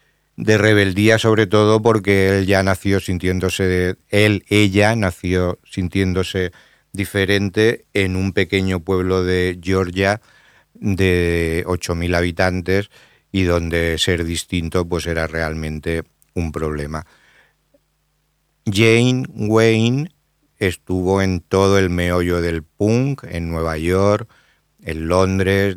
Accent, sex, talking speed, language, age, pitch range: Spanish, male, 105 wpm, Spanish, 50-69, 85-95 Hz